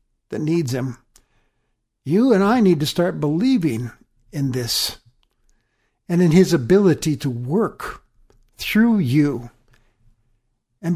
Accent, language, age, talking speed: American, English, 60-79, 115 wpm